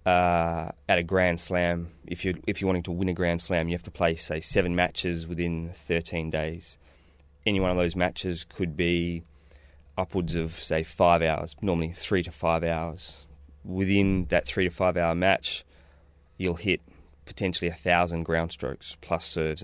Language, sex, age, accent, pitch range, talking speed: English, male, 20-39, Australian, 80-90 Hz, 175 wpm